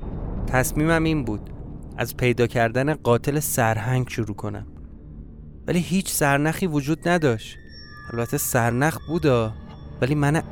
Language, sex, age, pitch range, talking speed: Persian, male, 30-49, 110-135 Hz, 115 wpm